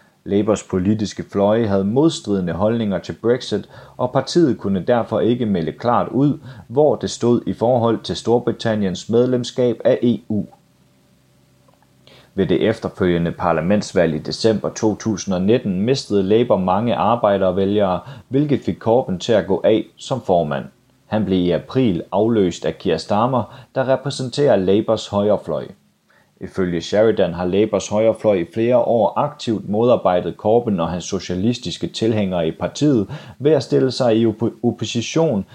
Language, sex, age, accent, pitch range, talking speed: Danish, male, 30-49, native, 95-120 Hz, 135 wpm